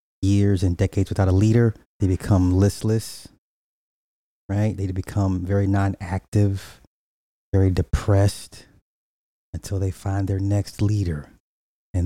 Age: 30-49